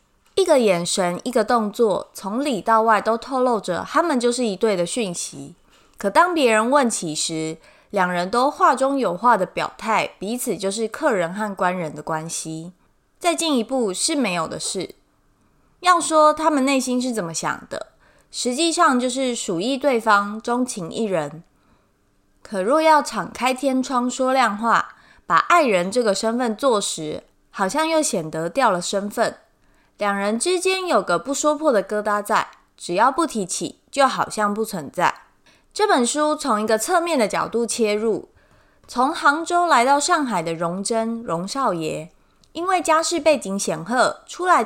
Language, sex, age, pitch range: Chinese, female, 20-39, 195-280 Hz